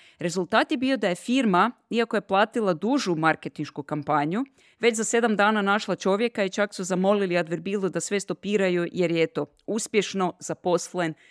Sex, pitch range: female, 170-215 Hz